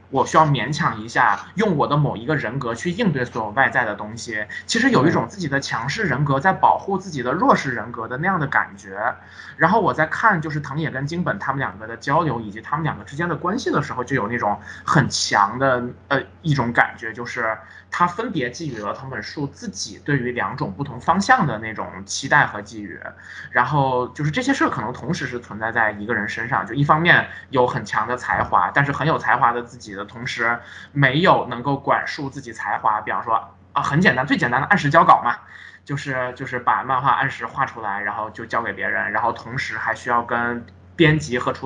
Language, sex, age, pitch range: Chinese, male, 20-39, 115-150 Hz